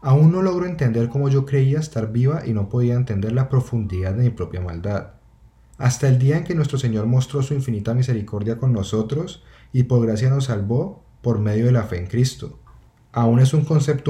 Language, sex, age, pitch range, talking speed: Spanish, male, 30-49, 115-140 Hz, 205 wpm